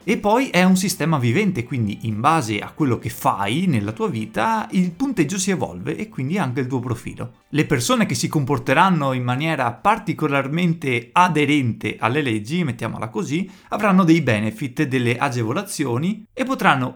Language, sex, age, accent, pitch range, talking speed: Italian, male, 30-49, native, 120-175 Hz, 165 wpm